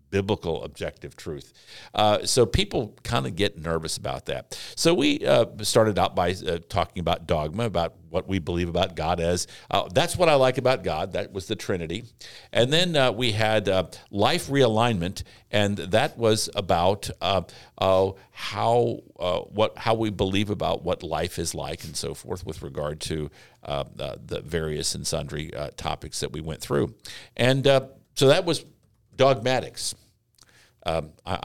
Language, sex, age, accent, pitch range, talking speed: English, male, 50-69, American, 85-115 Hz, 170 wpm